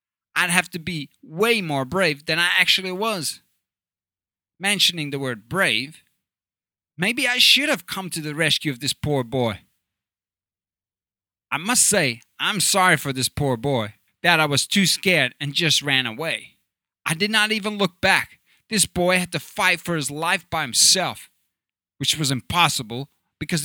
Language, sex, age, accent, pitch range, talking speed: English, male, 30-49, American, 125-185 Hz, 165 wpm